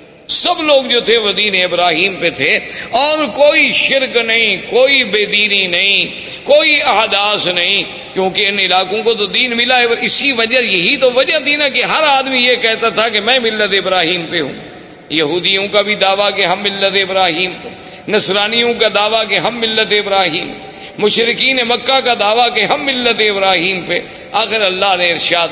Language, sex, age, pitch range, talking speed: Urdu, male, 50-69, 175-220 Hz, 175 wpm